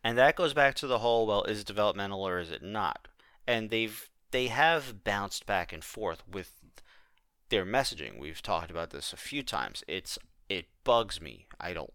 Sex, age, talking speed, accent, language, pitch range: male, 30-49, 195 wpm, American, English, 95-125 Hz